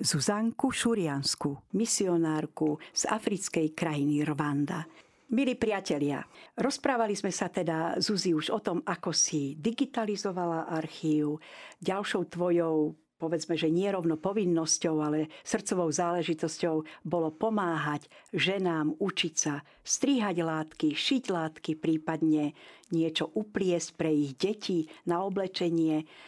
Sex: female